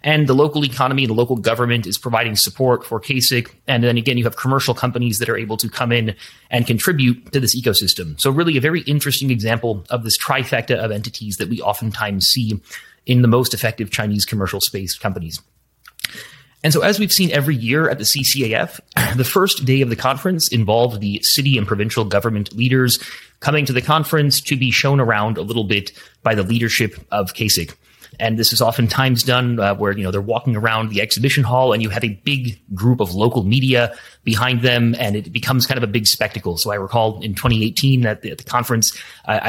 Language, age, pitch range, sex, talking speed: English, 30-49, 110-130 Hz, male, 210 wpm